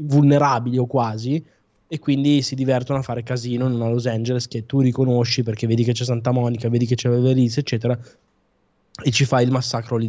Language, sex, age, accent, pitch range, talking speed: Italian, male, 20-39, native, 120-140 Hz, 200 wpm